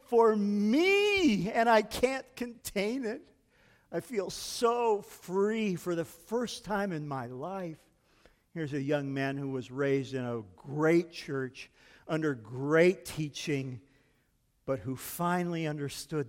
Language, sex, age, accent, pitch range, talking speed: English, male, 50-69, American, 140-225 Hz, 135 wpm